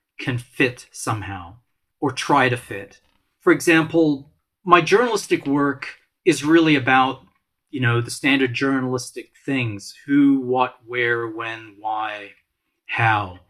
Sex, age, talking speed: male, 40-59, 120 wpm